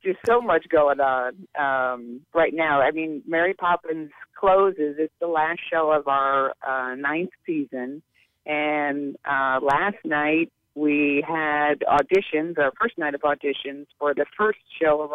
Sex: female